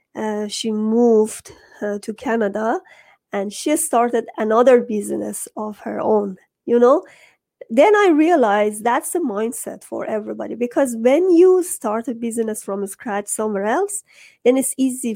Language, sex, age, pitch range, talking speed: English, female, 30-49, 210-250 Hz, 145 wpm